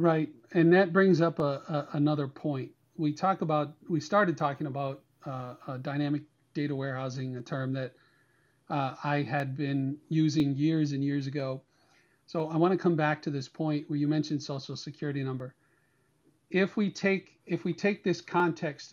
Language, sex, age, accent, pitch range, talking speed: English, male, 40-59, American, 140-165 Hz, 180 wpm